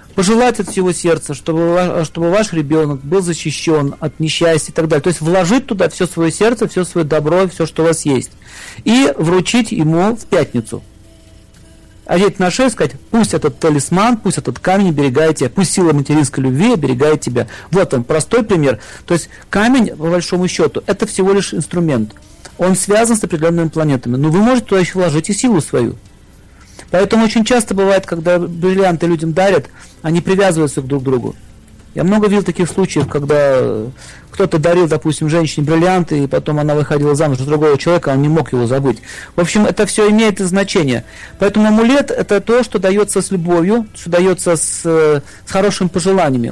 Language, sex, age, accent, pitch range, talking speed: Russian, male, 40-59, native, 150-200 Hz, 180 wpm